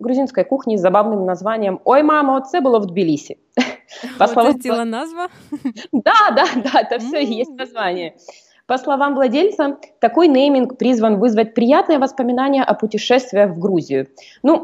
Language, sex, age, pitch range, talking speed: Russian, female, 20-39, 205-275 Hz, 140 wpm